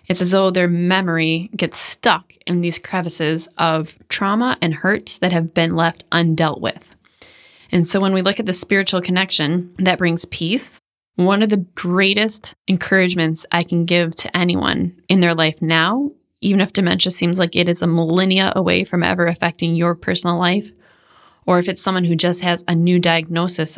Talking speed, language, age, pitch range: 180 wpm, English, 20-39, 165-190 Hz